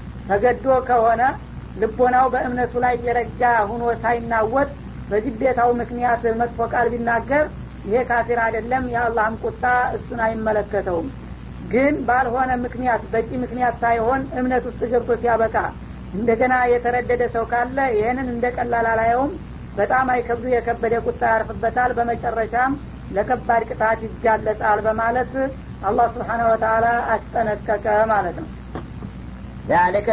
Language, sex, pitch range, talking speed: Amharic, female, 210-235 Hz, 90 wpm